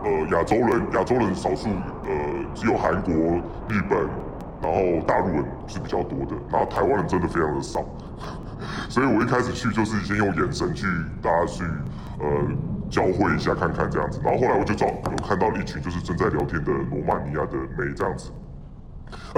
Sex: female